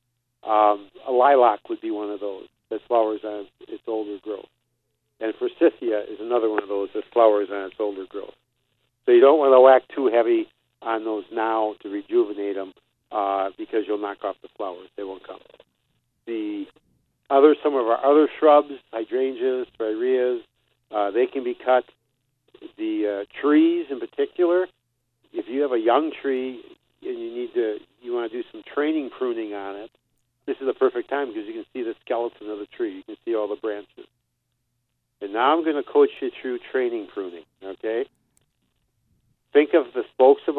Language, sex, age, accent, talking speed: English, male, 50-69, American, 185 wpm